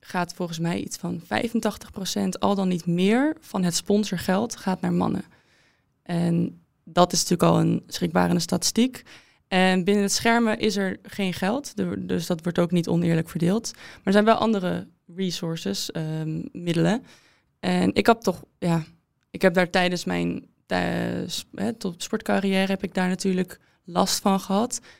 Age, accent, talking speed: 20-39, Dutch, 165 wpm